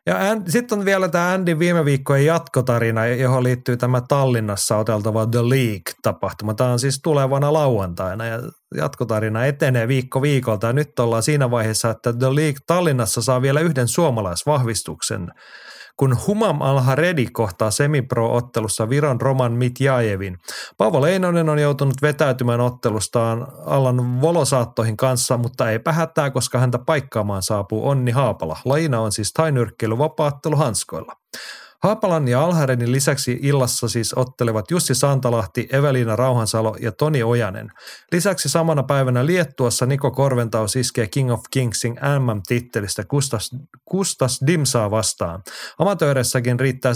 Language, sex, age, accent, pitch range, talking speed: Finnish, male, 30-49, native, 115-145 Hz, 130 wpm